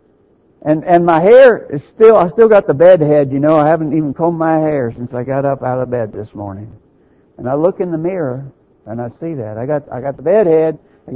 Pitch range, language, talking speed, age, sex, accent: 125-195 Hz, English, 255 wpm, 60-79, male, American